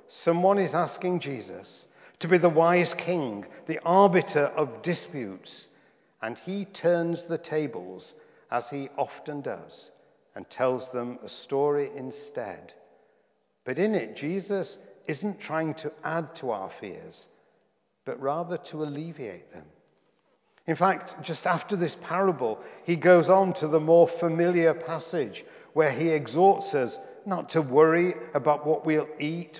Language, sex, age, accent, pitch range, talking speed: English, male, 50-69, British, 145-180 Hz, 140 wpm